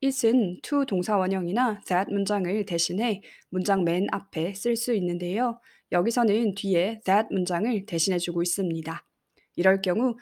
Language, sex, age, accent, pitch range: Korean, female, 20-39, native, 180-220 Hz